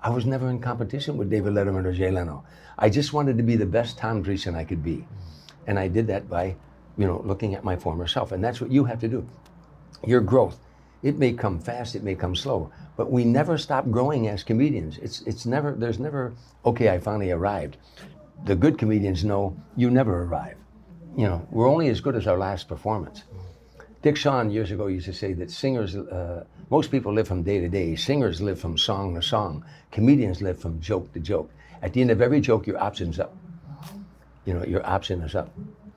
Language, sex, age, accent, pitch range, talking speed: English, male, 60-79, American, 95-130 Hz, 215 wpm